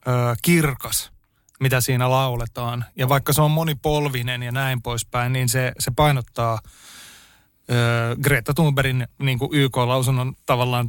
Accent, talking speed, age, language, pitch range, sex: native, 110 wpm, 30-49, Finnish, 125-150 Hz, male